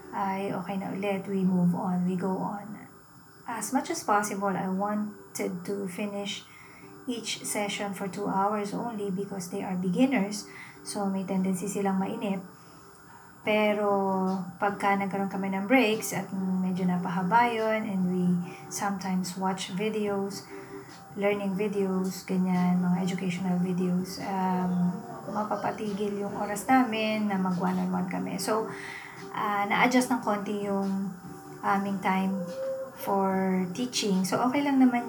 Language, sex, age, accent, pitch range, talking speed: Filipino, female, 20-39, native, 185-205 Hz, 135 wpm